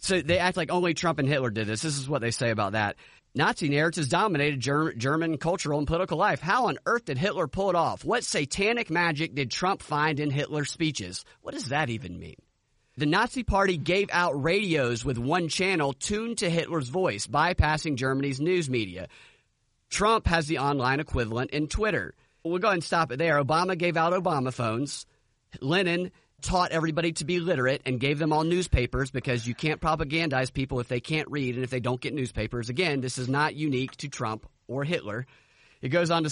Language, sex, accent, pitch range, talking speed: English, male, American, 130-175 Hz, 200 wpm